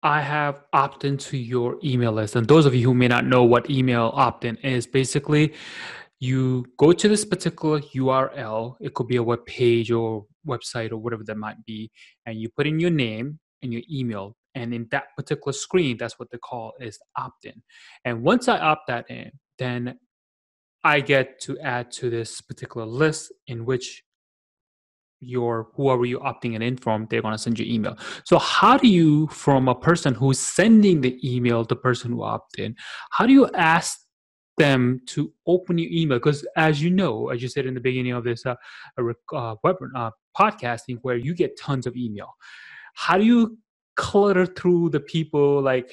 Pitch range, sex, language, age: 120-150 Hz, male, English, 20-39